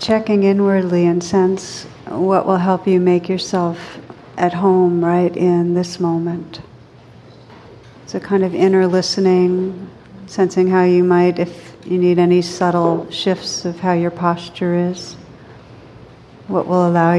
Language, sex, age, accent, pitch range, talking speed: English, female, 60-79, American, 155-185 Hz, 140 wpm